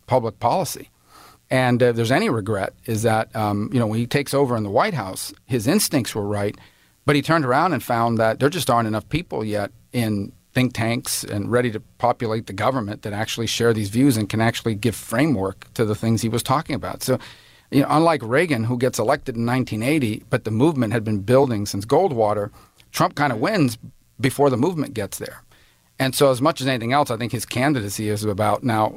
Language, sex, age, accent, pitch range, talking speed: English, male, 40-59, American, 110-140 Hz, 215 wpm